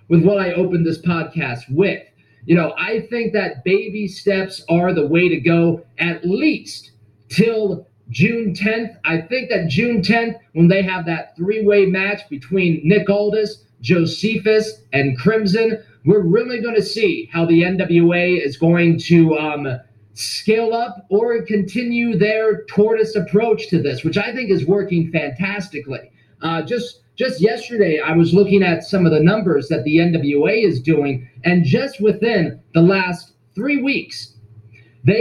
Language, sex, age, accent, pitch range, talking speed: English, male, 40-59, American, 165-215 Hz, 160 wpm